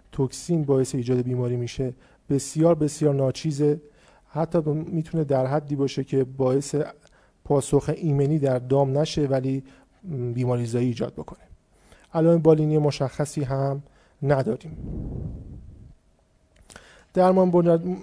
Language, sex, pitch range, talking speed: Persian, male, 130-155 Hz, 105 wpm